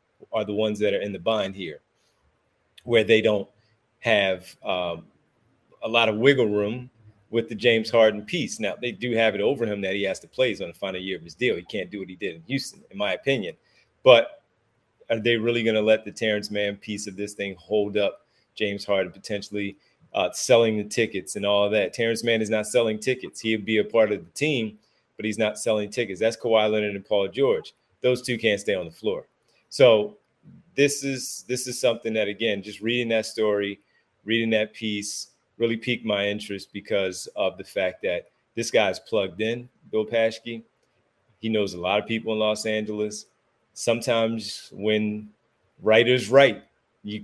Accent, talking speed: American, 200 wpm